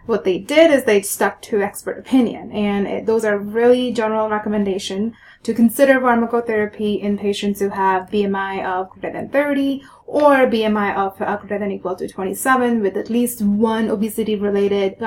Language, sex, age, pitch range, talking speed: English, female, 20-39, 200-225 Hz, 160 wpm